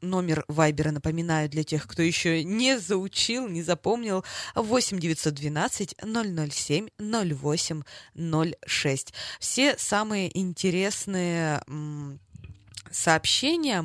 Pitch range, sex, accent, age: 150-205 Hz, female, native, 20-39